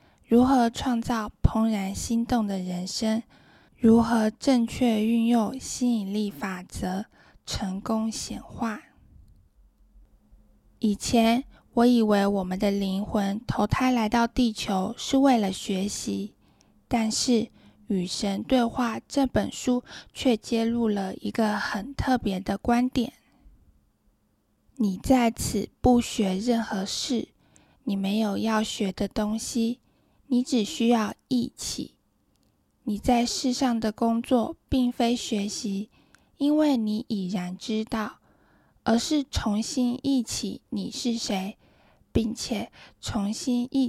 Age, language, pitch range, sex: 10-29, Chinese, 205-245 Hz, female